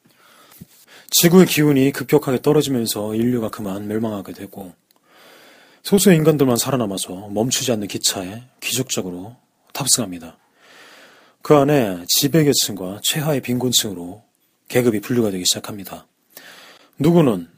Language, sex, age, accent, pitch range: Korean, male, 30-49, native, 105-150 Hz